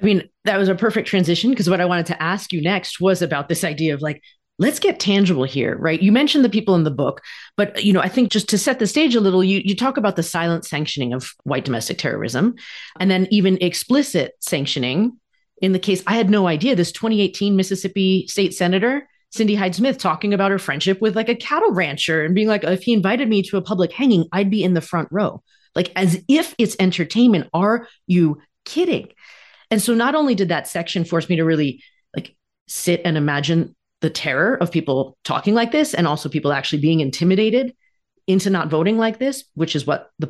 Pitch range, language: 160-215 Hz, English